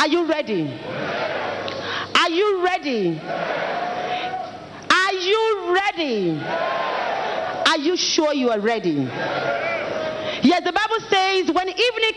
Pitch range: 200-325 Hz